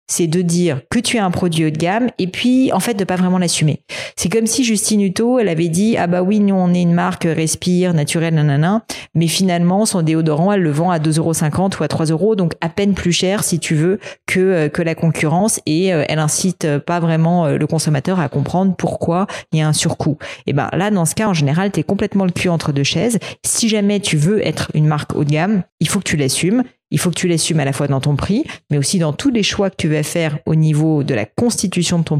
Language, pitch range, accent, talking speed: French, 150-185 Hz, French, 260 wpm